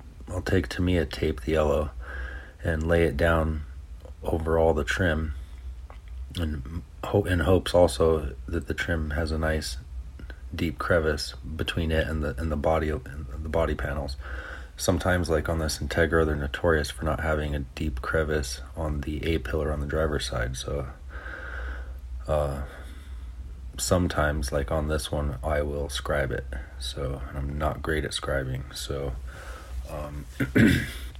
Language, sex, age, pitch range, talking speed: English, male, 30-49, 70-80 Hz, 150 wpm